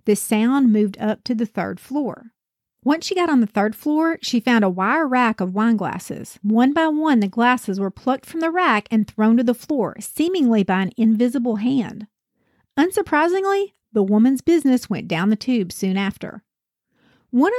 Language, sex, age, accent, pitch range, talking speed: English, female, 40-59, American, 210-295 Hz, 185 wpm